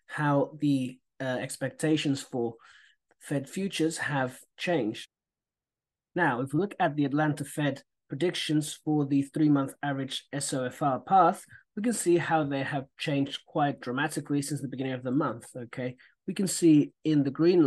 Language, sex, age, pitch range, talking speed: English, male, 30-49, 130-155 Hz, 160 wpm